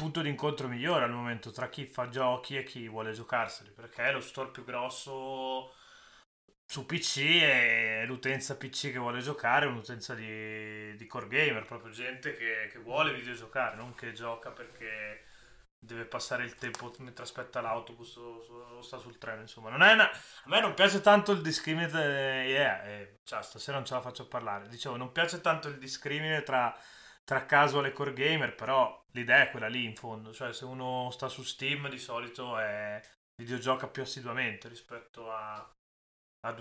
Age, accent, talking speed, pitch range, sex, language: 20-39, native, 185 wpm, 115-135 Hz, male, Italian